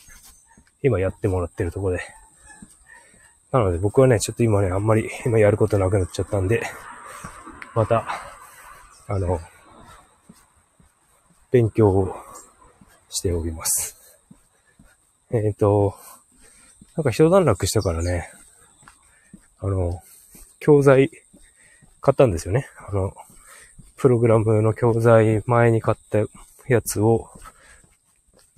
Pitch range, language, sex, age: 95-125 Hz, Japanese, male, 20-39